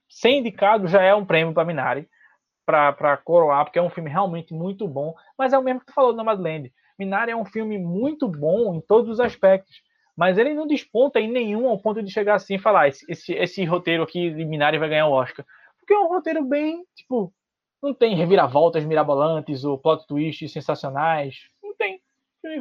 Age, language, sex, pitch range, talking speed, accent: 20-39, Portuguese, male, 155-210 Hz, 205 wpm, Brazilian